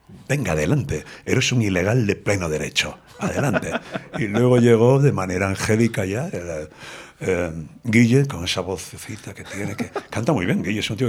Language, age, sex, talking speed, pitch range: Spanish, 60-79, male, 175 wpm, 90-115 Hz